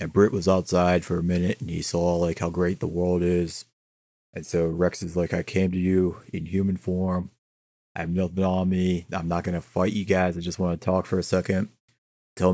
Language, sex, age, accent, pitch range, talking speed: English, male, 30-49, American, 90-100 Hz, 235 wpm